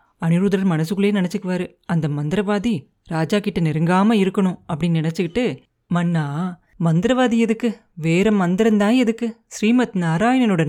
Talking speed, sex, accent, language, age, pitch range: 105 wpm, female, native, Tamil, 30-49, 165-225 Hz